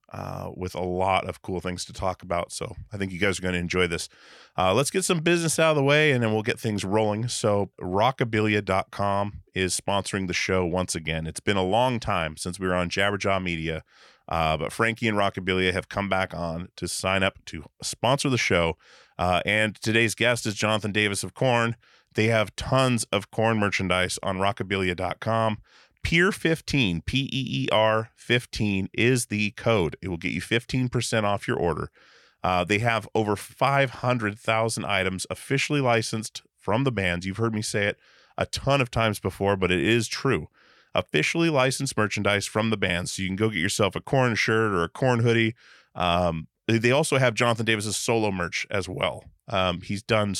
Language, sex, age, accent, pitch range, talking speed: English, male, 30-49, American, 95-115 Hz, 190 wpm